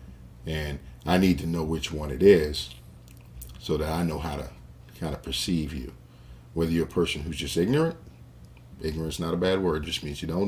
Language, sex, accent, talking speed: English, male, American, 200 wpm